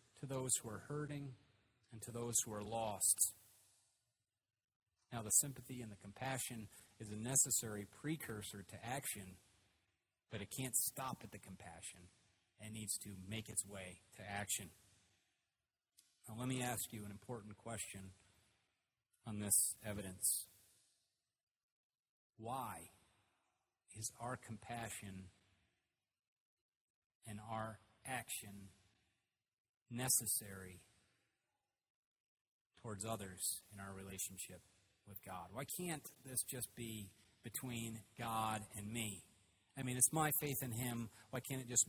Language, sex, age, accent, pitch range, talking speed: English, male, 30-49, American, 100-125 Hz, 120 wpm